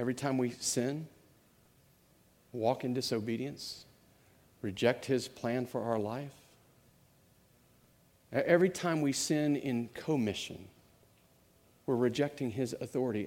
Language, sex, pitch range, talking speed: English, male, 115-140 Hz, 105 wpm